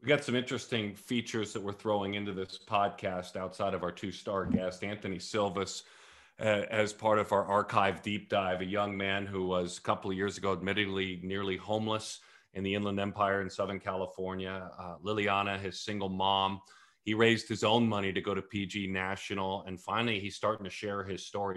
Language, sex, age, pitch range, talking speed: English, male, 40-59, 95-115 Hz, 190 wpm